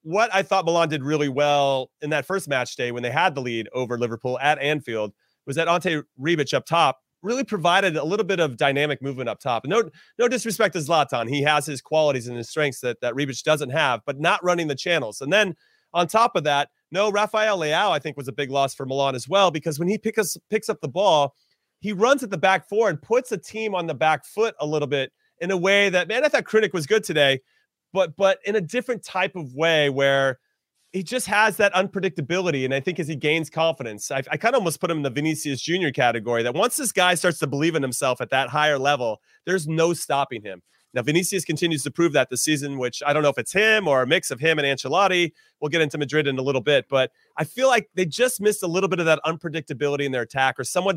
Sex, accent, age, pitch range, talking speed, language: male, American, 30-49, 140-185 Hz, 250 wpm, English